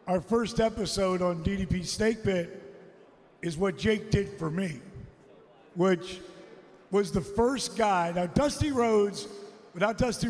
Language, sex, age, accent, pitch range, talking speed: English, male, 50-69, American, 170-210 Hz, 130 wpm